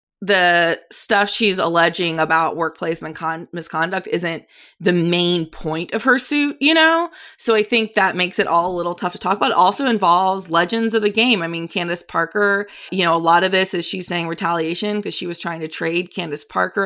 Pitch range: 175-230 Hz